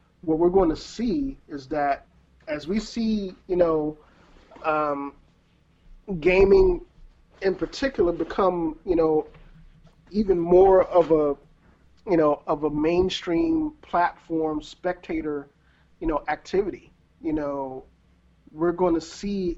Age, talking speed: 30-49, 120 wpm